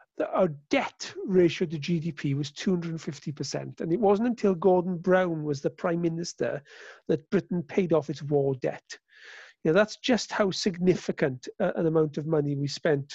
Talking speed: 170 wpm